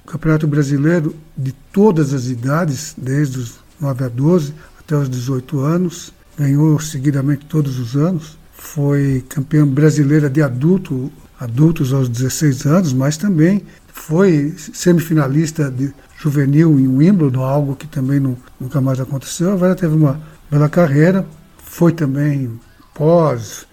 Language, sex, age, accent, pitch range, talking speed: Portuguese, male, 60-79, Brazilian, 135-160 Hz, 130 wpm